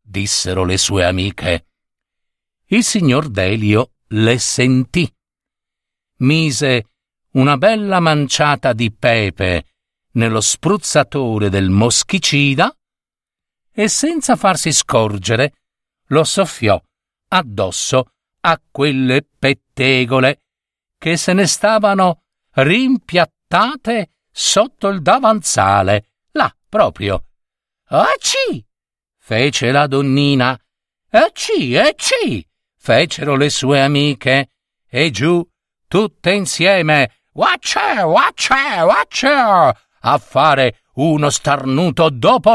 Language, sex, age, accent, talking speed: Italian, male, 50-69, native, 90 wpm